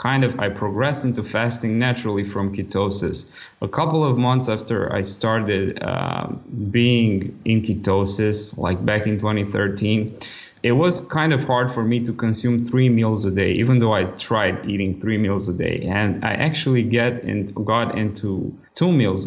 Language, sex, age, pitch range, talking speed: English, male, 20-39, 100-120 Hz, 170 wpm